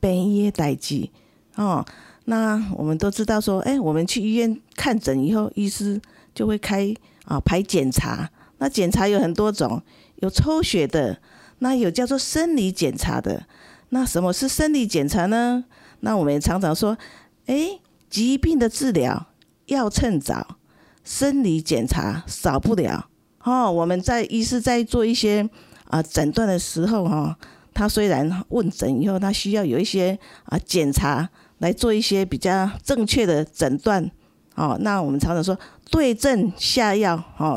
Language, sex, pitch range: Chinese, female, 170-245 Hz